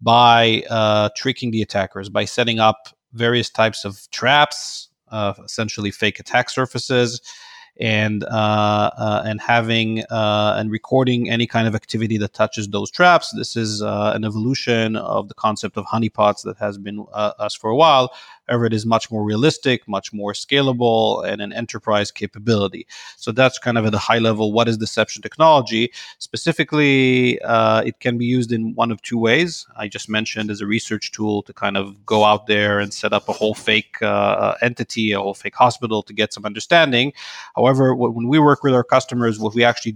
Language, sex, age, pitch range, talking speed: English, male, 30-49, 105-120 Hz, 190 wpm